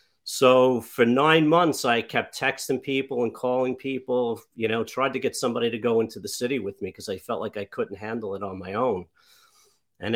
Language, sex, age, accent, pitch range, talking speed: English, male, 50-69, American, 105-130 Hz, 215 wpm